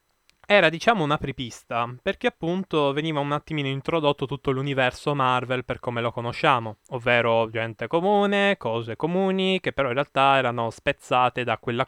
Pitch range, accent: 115-150 Hz, native